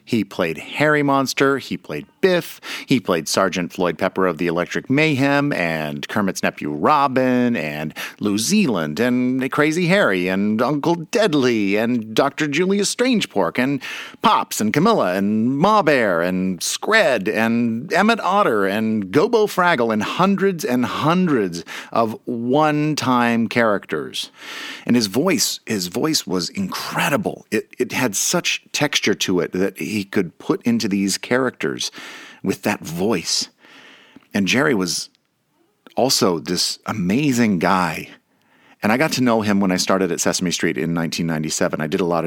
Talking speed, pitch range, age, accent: 150 wpm, 90-145 Hz, 50-69, American